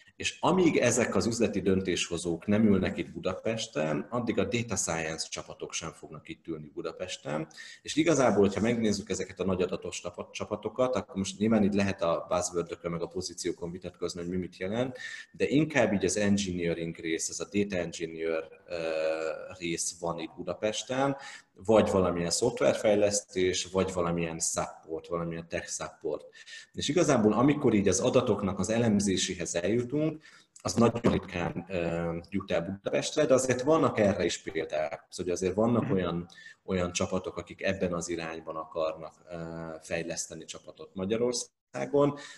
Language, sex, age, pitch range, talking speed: Hungarian, male, 30-49, 85-105 Hz, 145 wpm